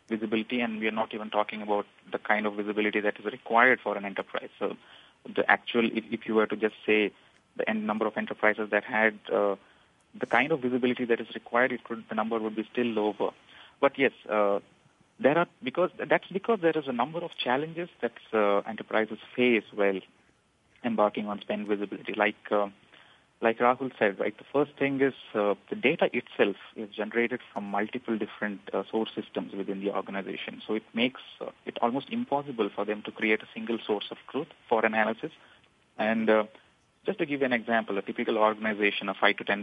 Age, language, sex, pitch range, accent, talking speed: 30-49, English, male, 105-120 Hz, Indian, 200 wpm